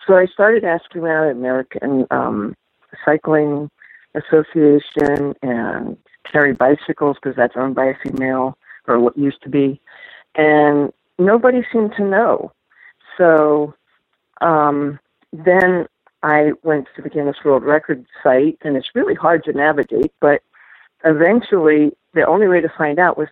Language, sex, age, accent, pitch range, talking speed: English, female, 50-69, American, 135-175 Hz, 140 wpm